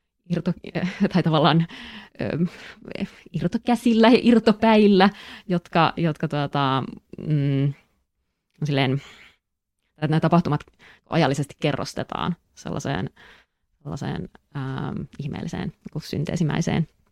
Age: 20-39